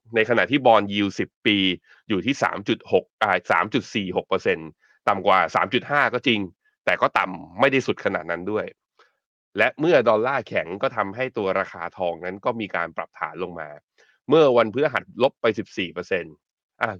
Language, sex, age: Thai, male, 20-39